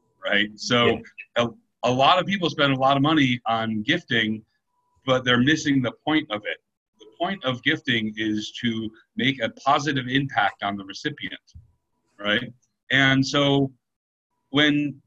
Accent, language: American, English